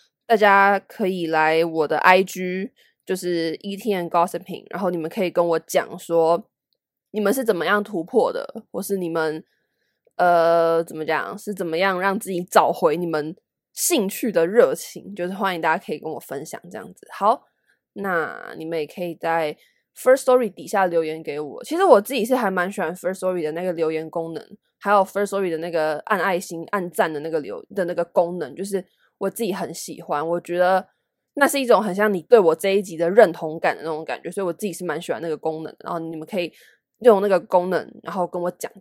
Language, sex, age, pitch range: Chinese, female, 20-39, 170-210 Hz